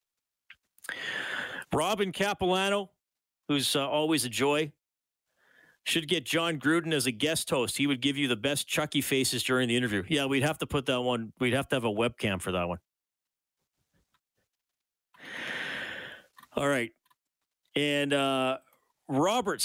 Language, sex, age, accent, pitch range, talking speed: English, male, 40-59, American, 120-150 Hz, 145 wpm